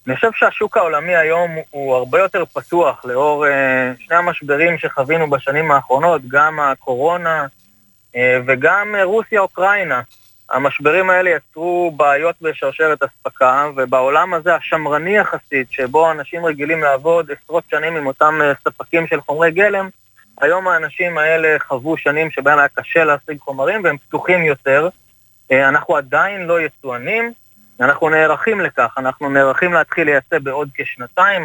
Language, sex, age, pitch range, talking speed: Hebrew, male, 20-39, 135-170 Hz, 130 wpm